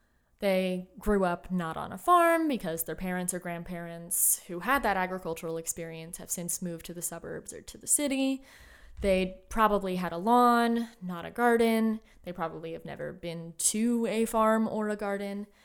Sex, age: female, 20-39